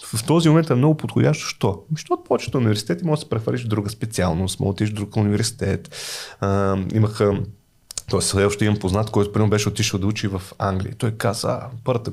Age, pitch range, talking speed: 30-49, 100-145 Hz, 200 wpm